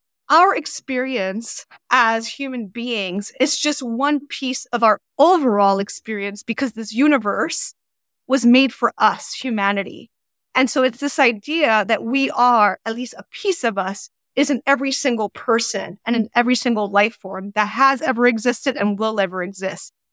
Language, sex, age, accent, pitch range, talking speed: English, female, 30-49, American, 205-260 Hz, 160 wpm